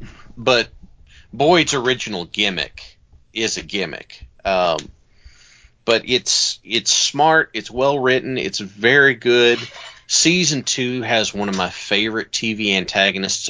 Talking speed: 115 wpm